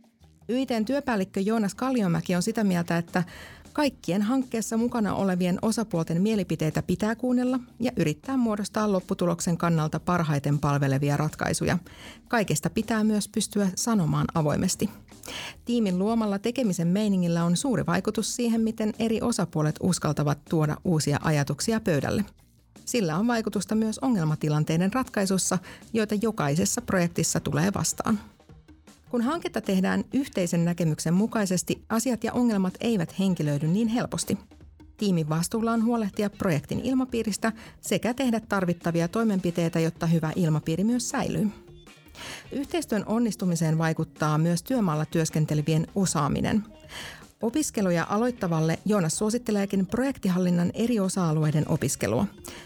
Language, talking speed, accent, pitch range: Finnish, 115 wpm, native, 165-225 Hz